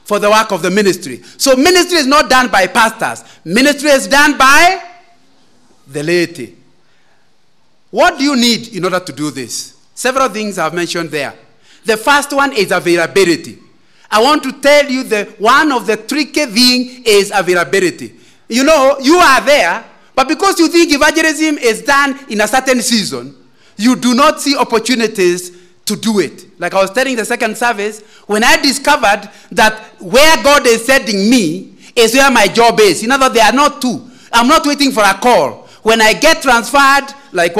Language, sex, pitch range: English, male, 195-275 Hz